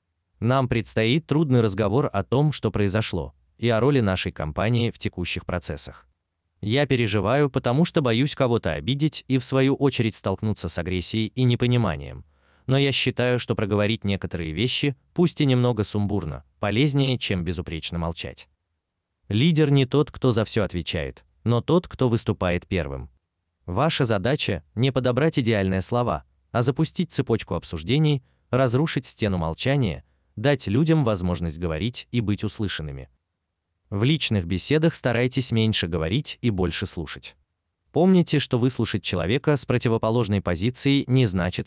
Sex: male